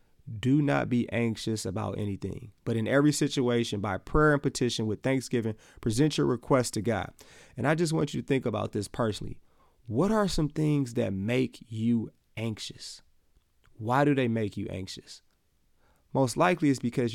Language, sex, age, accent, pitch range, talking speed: English, male, 30-49, American, 110-135 Hz, 170 wpm